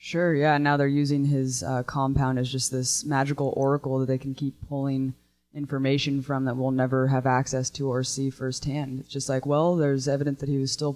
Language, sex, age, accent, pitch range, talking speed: English, female, 20-39, American, 130-145 Hz, 220 wpm